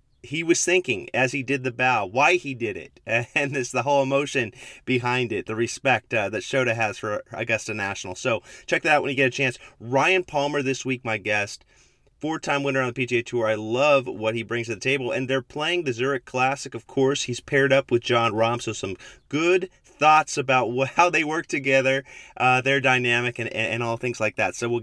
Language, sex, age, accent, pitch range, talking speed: English, male, 30-49, American, 115-140 Hz, 220 wpm